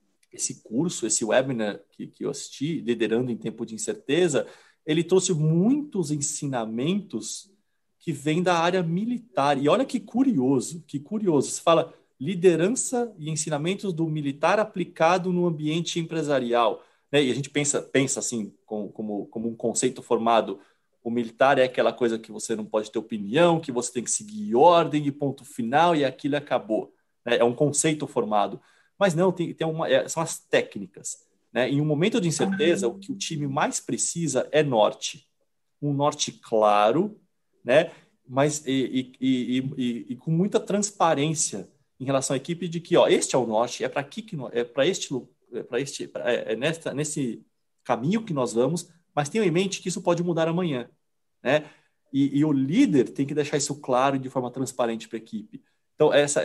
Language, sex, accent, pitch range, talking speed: Portuguese, male, Brazilian, 130-175 Hz, 180 wpm